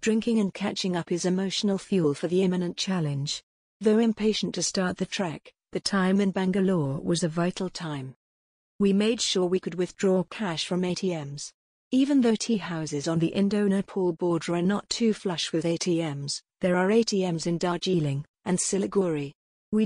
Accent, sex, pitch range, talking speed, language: British, female, 170-200 Hz, 170 wpm, English